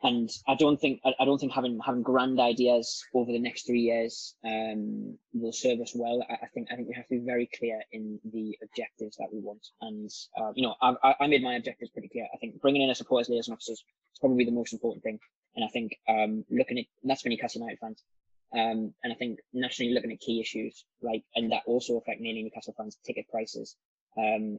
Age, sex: 10-29, male